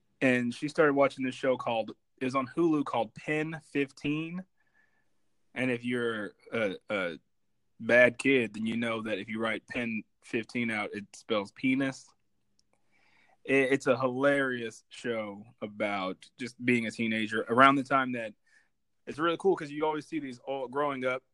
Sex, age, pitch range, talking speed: male, 20-39, 110-130 Hz, 165 wpm